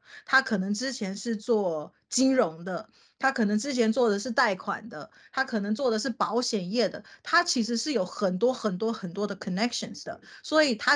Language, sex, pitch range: Chinese, female, 195-250 Hz